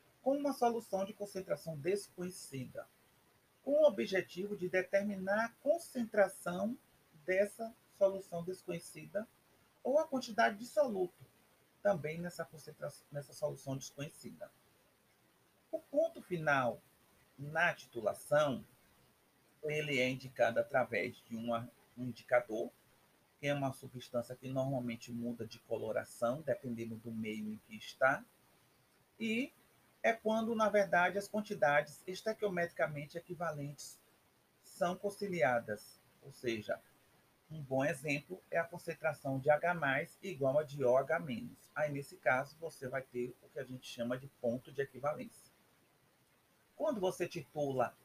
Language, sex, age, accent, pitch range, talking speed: Portuguese, male, 40-59, Brazilian, 130-195 Hz, 120 wpm